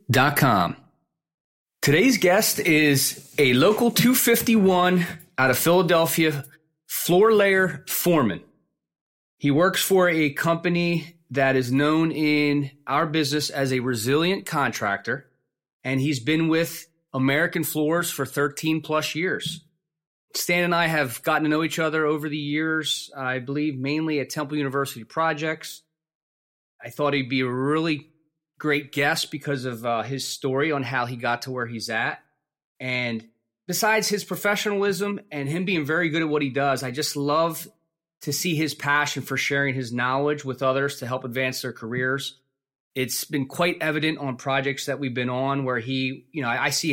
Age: 30-49